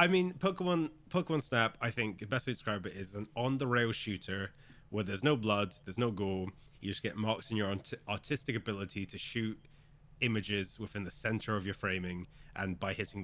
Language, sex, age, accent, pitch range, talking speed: English, male, 30-49, British, 100-135 Hz, 200 wpm